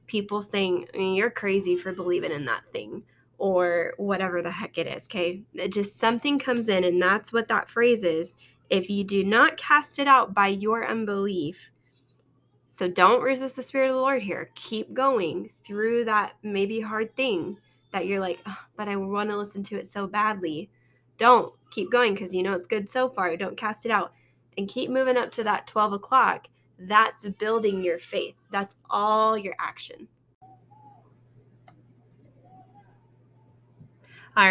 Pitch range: 175-220 Hz